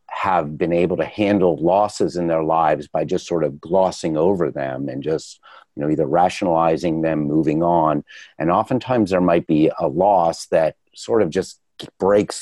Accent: American